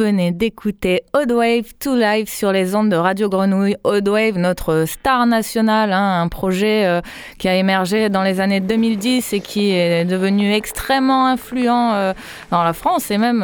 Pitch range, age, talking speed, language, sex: 185-240 Hz, 20-39, 180 wpm, French, female